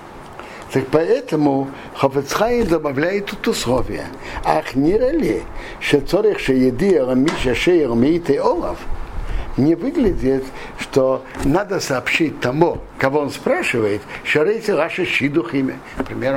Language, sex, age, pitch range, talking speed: Russian, male, 60-79, 135-195 Hz, 115 wpm